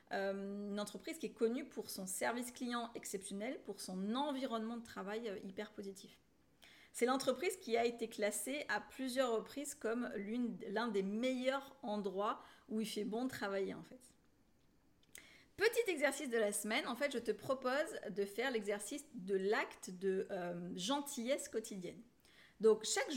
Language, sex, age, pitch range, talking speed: French, female, 30-49, 200-255 Hz, 160 wpm